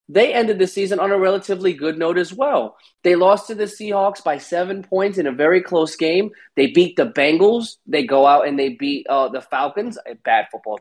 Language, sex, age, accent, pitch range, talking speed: English, male, 20-39, American, 150-225 Hz, 220 wpm